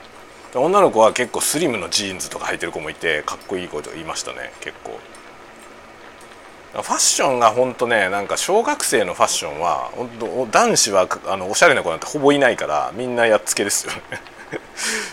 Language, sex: Japanese, male